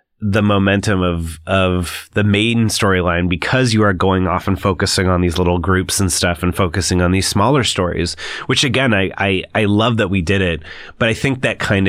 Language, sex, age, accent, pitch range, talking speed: English, male, 30-49, American, 90-110 Hz, 205 wpm